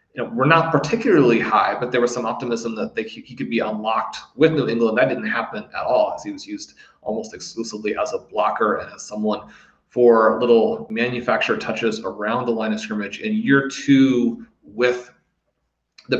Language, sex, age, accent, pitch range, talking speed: English, male, 30-49, American, 115-145 Hz, 185 wpm